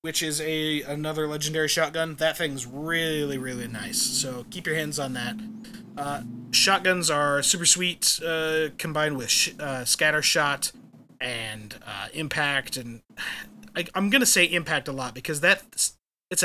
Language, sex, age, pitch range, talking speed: English, male, 30-49, 145-175 Hz, 155 wpm